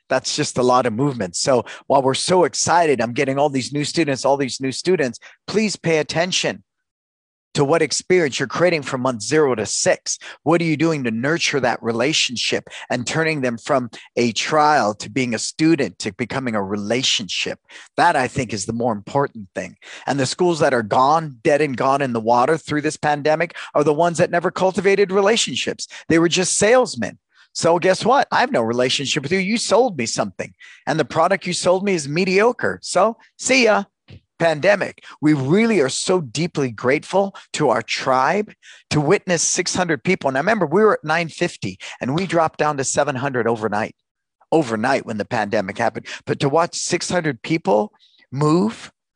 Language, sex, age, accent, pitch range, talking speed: English, male, 40-59, American, 130-180 Hz, 185 wpm